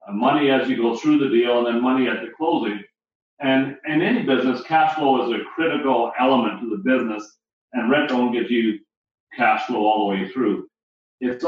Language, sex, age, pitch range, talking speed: English, male, 40-59, 120-145 Hz, 200 wpm